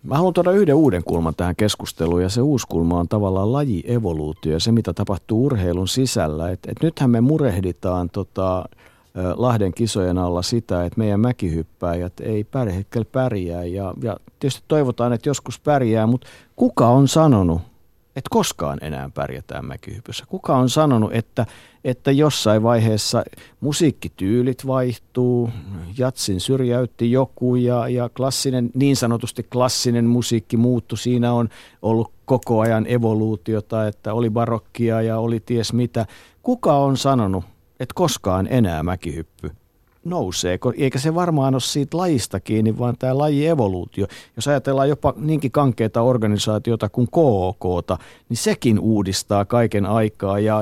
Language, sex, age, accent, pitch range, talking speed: Finnish, male, 50-69, native, 100-125 Hz, 140 wpm